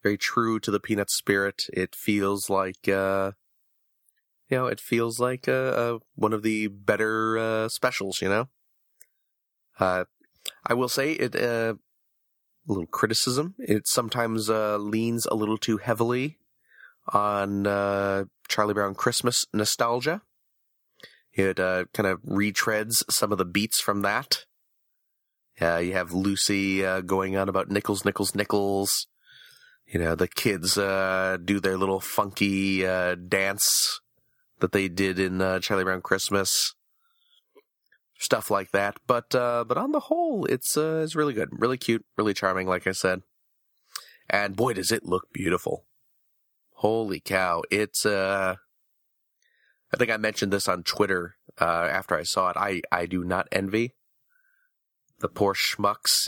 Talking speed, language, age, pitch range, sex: 150 wpm, English, 30-49, 95-115 Hz, male